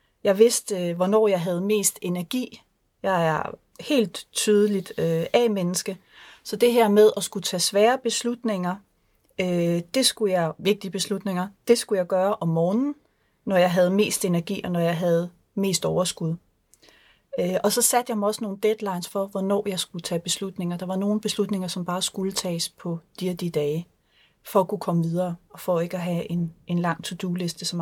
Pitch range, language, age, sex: 175-210 Hz, Danish, 30-49, female